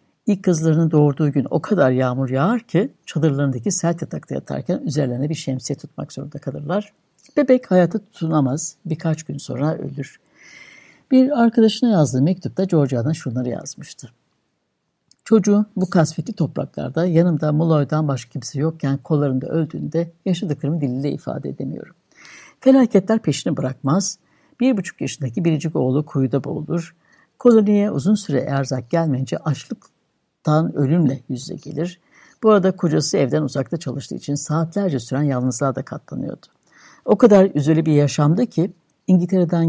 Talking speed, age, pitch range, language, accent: 130 wpm, 60-79, 140-190 Hz, Turkish, native